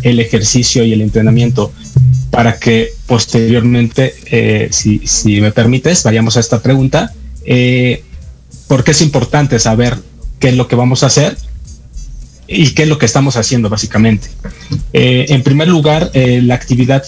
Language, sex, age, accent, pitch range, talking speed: Spanish, male, 30-49, Mexican, 110-135 Hz, 155 wpm